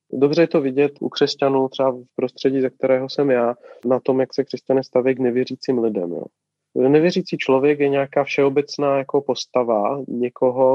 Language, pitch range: Czech, 125-150 Hz